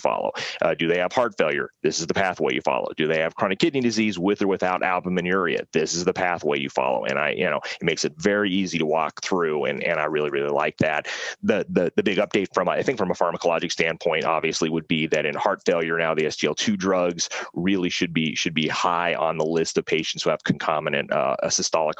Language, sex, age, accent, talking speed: Italian, male, 30-49, American, 240 wpm